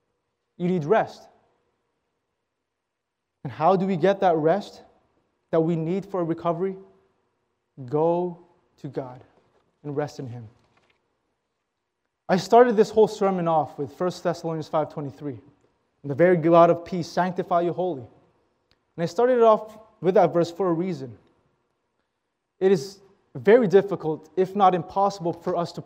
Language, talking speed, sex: English, 145 wpm, male